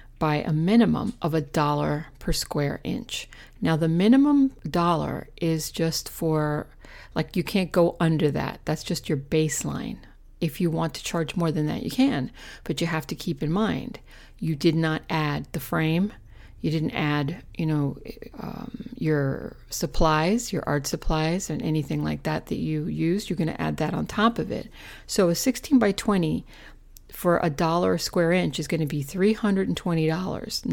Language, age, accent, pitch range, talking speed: English, 50-69, American, 150-180 Hz, 180 wpm